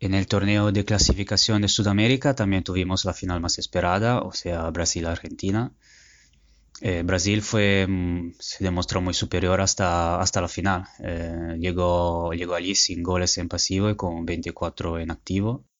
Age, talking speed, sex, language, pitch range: 20-39, 150 wpm, male, Spanish, 90-100 Hz